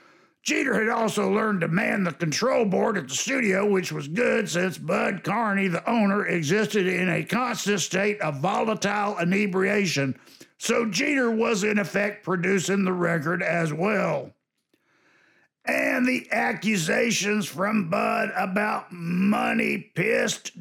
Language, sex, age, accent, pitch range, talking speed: English, male, 50-69, American, 180-230 Hz, 135 wpm